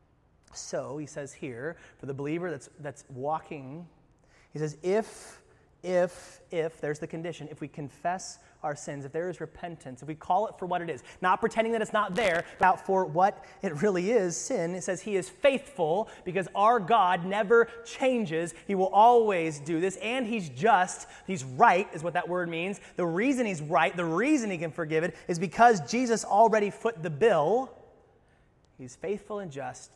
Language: English